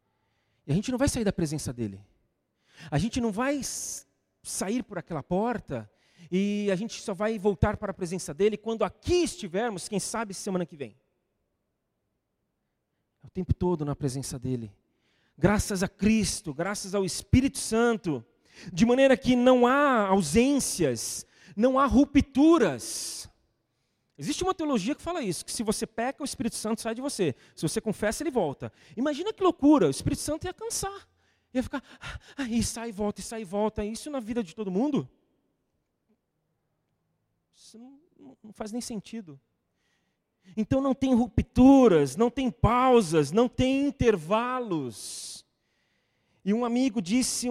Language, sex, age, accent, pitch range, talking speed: Portuguese, male, 40-59, Brazilian, 180-255 Hz, 155 wpm